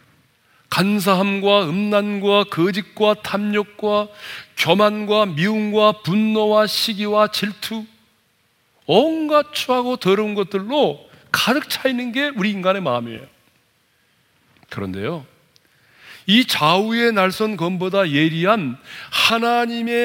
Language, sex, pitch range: Korean, male, 160-235 Hz